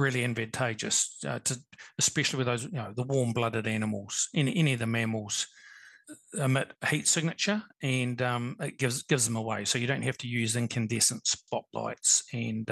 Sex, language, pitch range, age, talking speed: male, English, 120-140 Hz, 40-59, 180 wpm